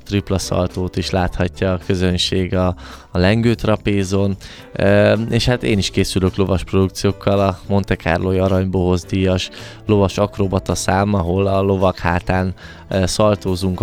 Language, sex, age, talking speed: Hungarian, male, 20-39, 130 wpm